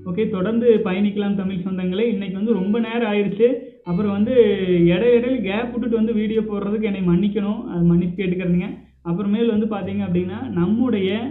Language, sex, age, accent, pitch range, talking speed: Tamil, male, 20-39, native, 180-220 Hz, 155 wpm